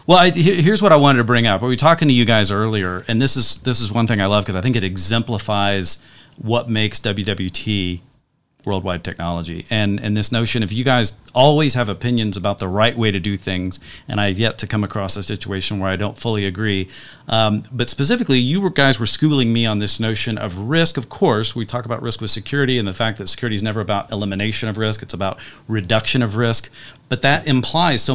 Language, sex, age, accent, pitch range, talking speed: English, male, 40-59, American, 105-135 Hz, 230 wpm